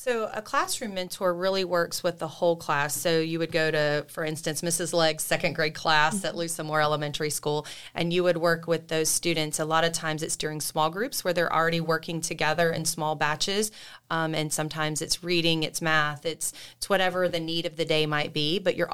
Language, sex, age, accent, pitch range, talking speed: English, female, 30-49, American, 155-175 Hz, 215 wpm